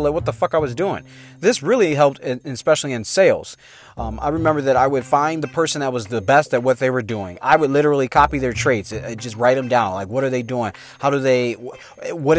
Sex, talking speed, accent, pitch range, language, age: male, 245 wpm, American, 130-165 Hz, English, 30-49